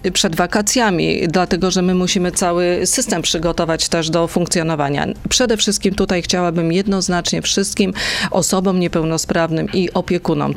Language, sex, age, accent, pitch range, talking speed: Polish, female, 40-59, native, 170-200 Hz, 125 wpm